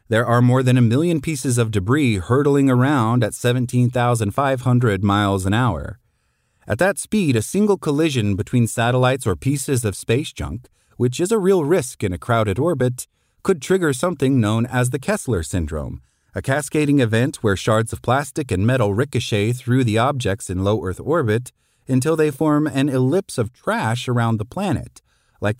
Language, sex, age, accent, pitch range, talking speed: English, male, 30-49, American, 105-140 Hz, 170 wpm